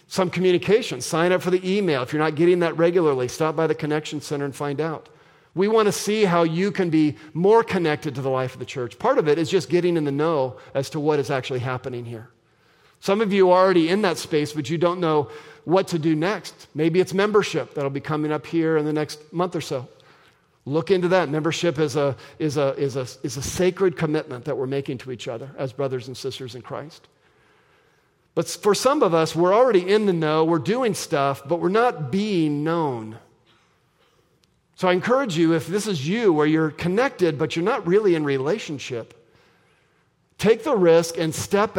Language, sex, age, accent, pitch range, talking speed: English, male, 50-69, American, 140-180 Hz, 205 wpm